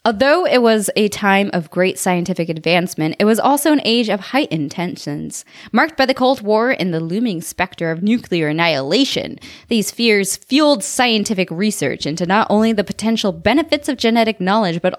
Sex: female